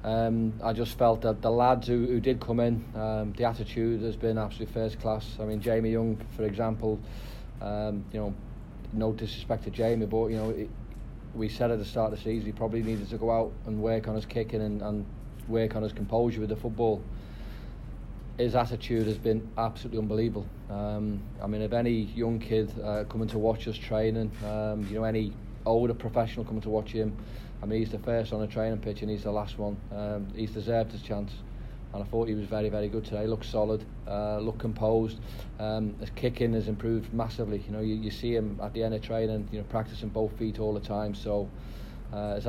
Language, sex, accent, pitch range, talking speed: English, male, British, 105-115 Hz, 220 wpm